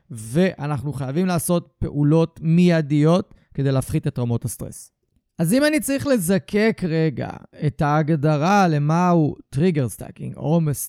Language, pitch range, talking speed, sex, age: Hebrew, 145-195 Hz, 125 wpm, male, 30-49